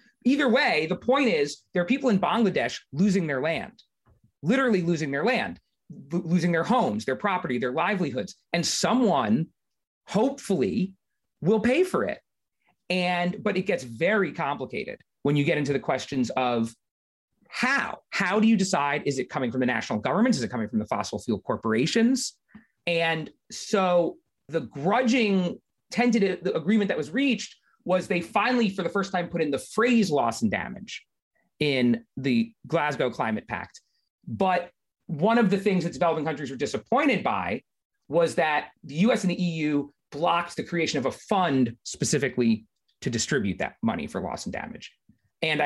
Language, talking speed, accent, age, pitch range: English, 165 wpm, American, 30-49, 150-215 Hz